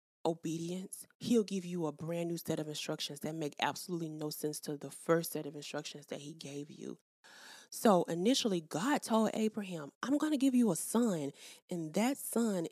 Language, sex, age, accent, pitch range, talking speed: English, female, 20-39, American, 165-235 Hz, 190 wpm